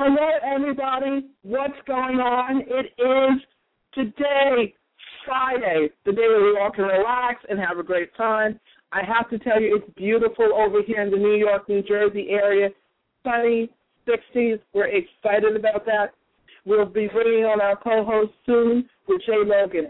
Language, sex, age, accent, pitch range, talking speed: English, female, 50-69, American, 185-245 Hz, 160 wpm